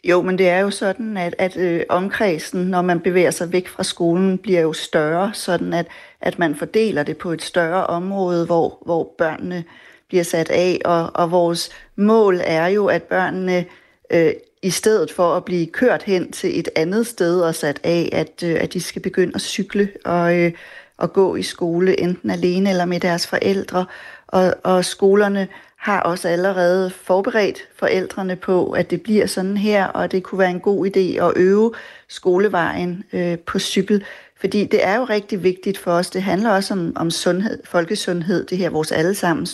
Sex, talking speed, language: female, 180 wpm, Danish